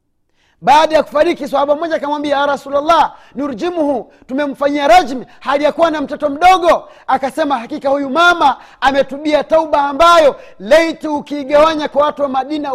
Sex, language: male, Swahili